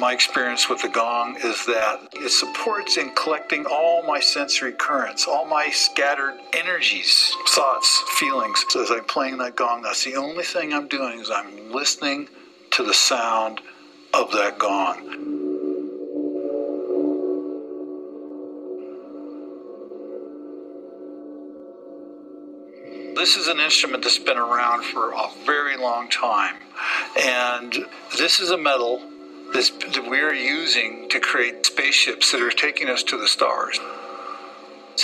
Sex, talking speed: male, 125 wpm